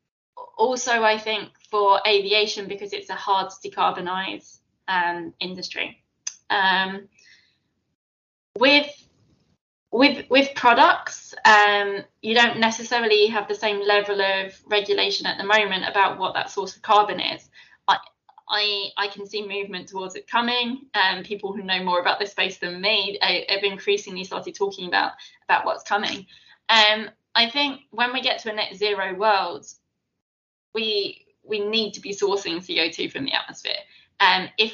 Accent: British